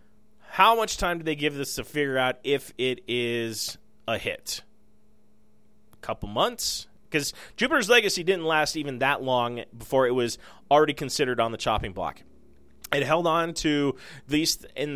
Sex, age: male, 30-49